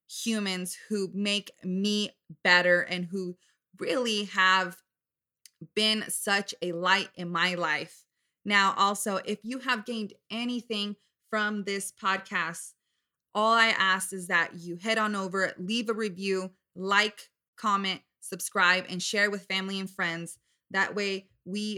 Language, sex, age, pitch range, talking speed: English, female, 20-39, 175-200 Hz, 140 wpm